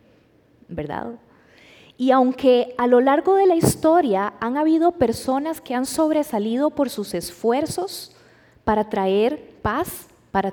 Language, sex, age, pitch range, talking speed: Spanish, female, 20-39, 220-295 Hz, 125 wpm